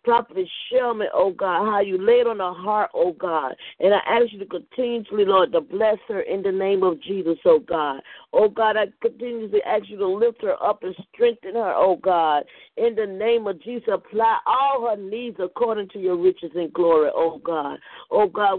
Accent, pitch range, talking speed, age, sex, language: American, 185-245 Hz, 205 wpm, 50-69, female, English